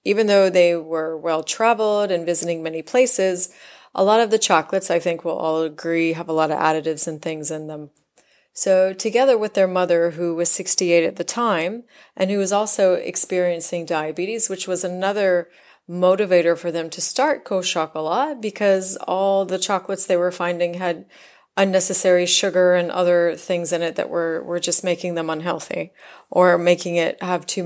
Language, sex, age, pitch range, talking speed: English, female, 30-49, 170-190 Hz, 175 wpm